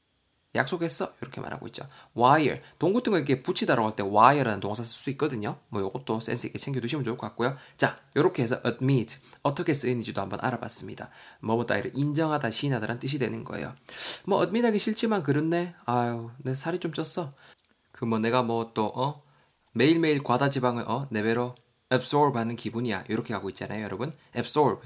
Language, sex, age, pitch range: Korean, male, 20-39, 110-150 Hz